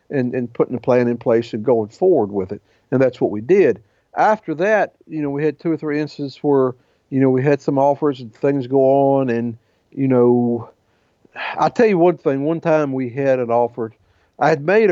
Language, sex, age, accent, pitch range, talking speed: English, male, 50-69, American, 110-140 Hz, 220 wpm